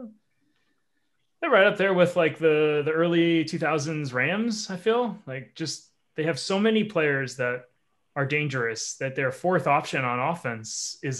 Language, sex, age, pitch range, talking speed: English, male, 20-39, 125-155 Hz, 165 wpm